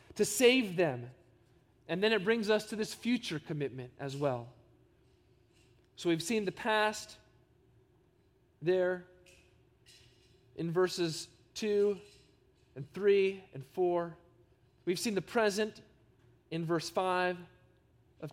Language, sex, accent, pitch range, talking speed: English, male, American, 125-190 Hz, 115 wpm